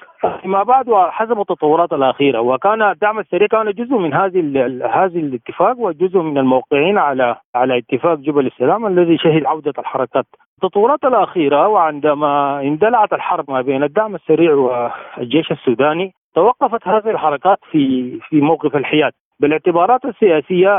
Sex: male